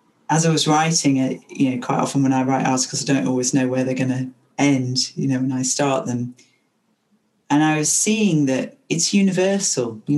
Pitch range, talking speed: 130-155 Hz, 210 wpm